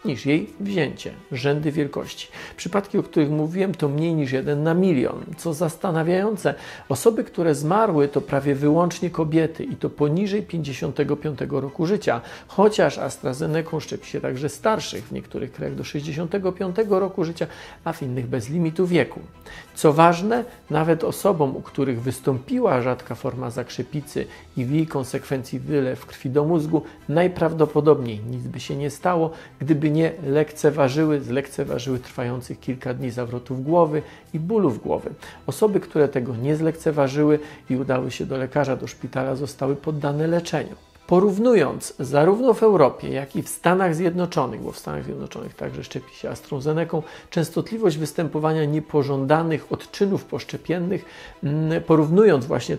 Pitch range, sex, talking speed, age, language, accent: 140-170 Hz, male, 140 wpm, 40-59, Polish, native